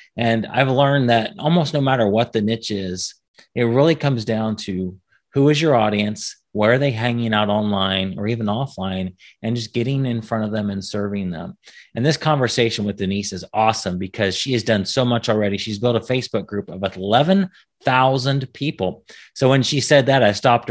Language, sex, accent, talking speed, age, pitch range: English, male, American, 195 wpm, 30-49, 105-130 Hz